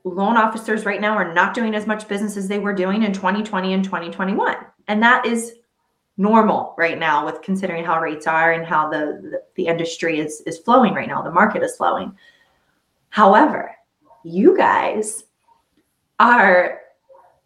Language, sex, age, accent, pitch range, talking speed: English, female, 20-39, American, 180-250 Hz, 160 wpm